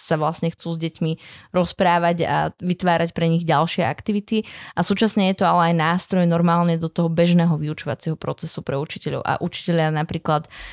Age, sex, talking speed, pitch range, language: 20-39, female, 170 wpm, 160-180 Hz, Slovak